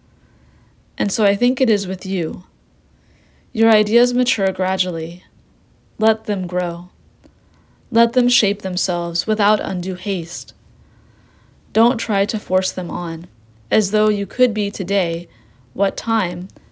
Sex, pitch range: female, 130-205 Hz